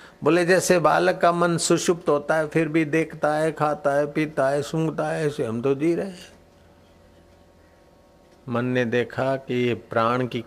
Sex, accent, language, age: male, native, Hindi, 50-69